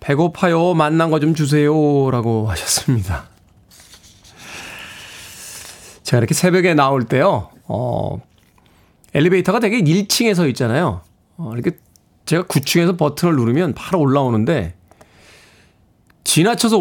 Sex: male